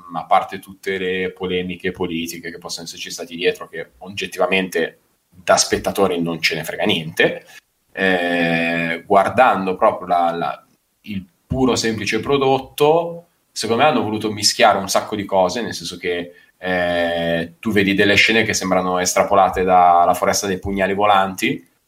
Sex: male